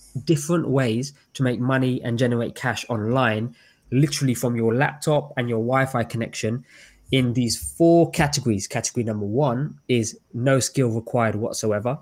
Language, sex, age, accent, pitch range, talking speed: English, male, 20-39, British, 115-140 Hz, 145 wpm